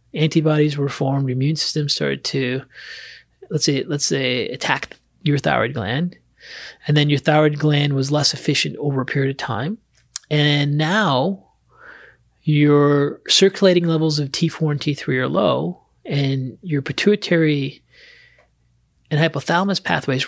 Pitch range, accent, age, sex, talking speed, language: 140-160 Hz, American, 30-49, male, 135 wpm, English